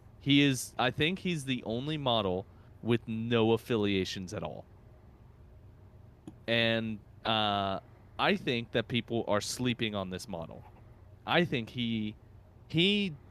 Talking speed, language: 125 wpm, English